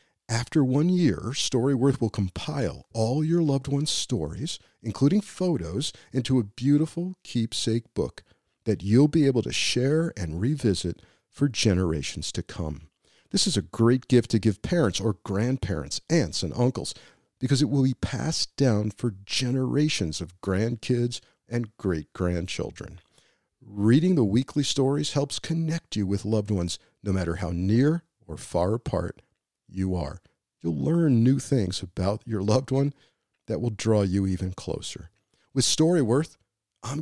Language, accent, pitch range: English, American, 100-140 Hz